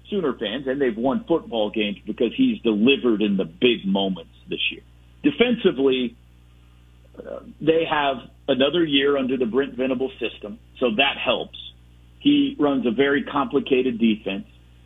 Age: 50-69